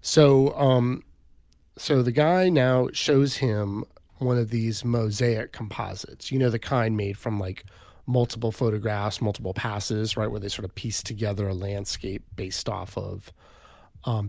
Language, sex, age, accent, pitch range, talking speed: English, male, 30-49, American, 100-130 Hz, 155 wpm